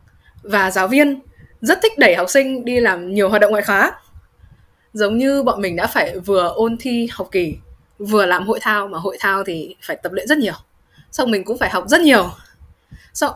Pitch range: 180-260 Hz